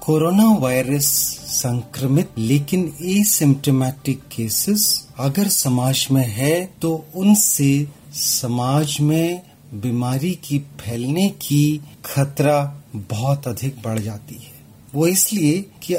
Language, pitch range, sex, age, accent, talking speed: Hindi, 135-195 Hz, male, 30-49, native, 100 wpm